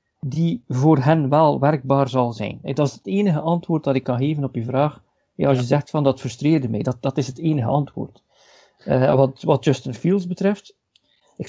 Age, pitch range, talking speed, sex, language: 50-69, 135-175 Hz, 205 wpm, male, Dutch